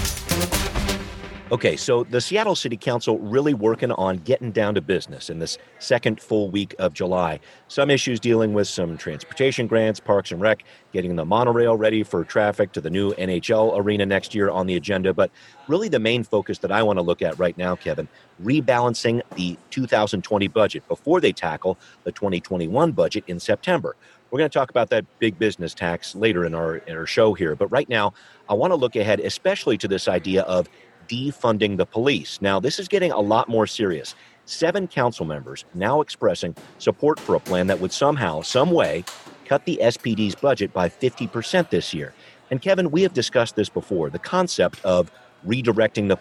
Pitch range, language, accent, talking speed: 95-125 Hz, English, American, 190 wpm